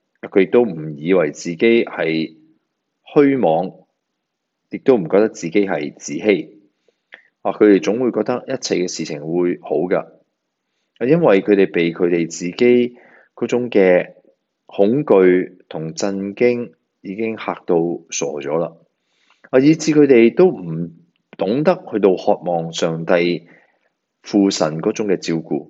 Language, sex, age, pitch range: Chinese, male, 30-49, 90-140 Hz